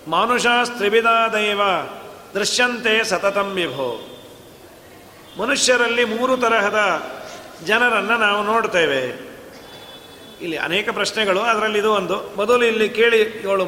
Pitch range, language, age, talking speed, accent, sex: 210-245 Hz, Kannada, 40-59, 90 wpm, native, male